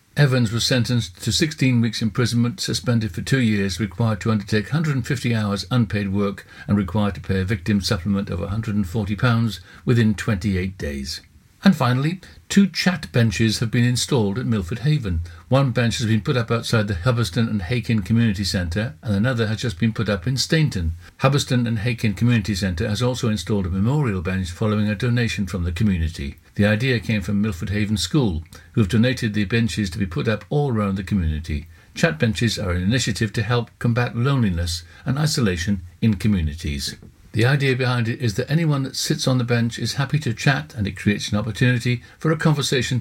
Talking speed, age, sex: 190 wpm, 60-79, male